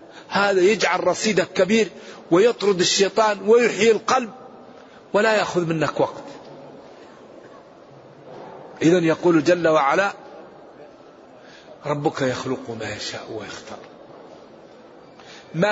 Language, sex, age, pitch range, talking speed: Arabic, male, 50-69, 150-180 Hz, 85 wpm